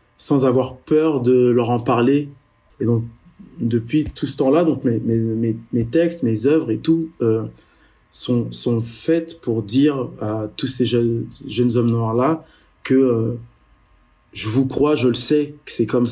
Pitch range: 115-135 Hz